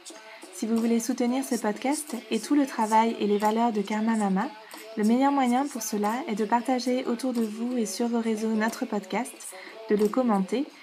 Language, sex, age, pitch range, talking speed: French, female, 20-39, 215-245 Hz, 200 wpm